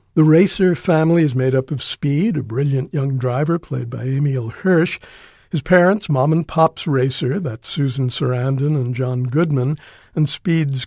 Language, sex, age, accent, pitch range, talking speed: English, male, 60-79, American, 130-160 Hz, 165 wpm